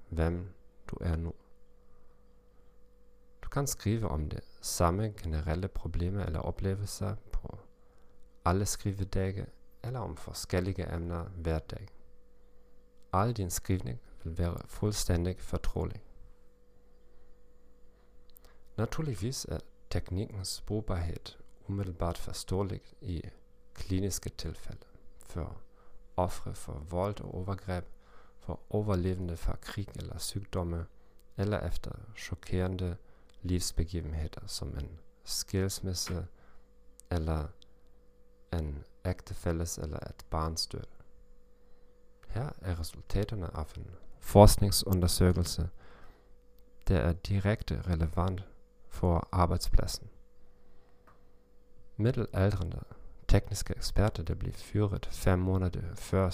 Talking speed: 90 wpm